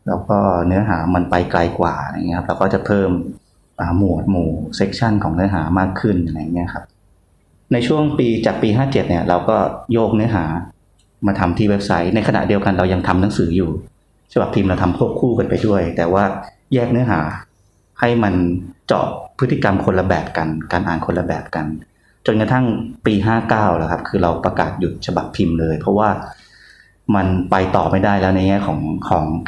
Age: 30-49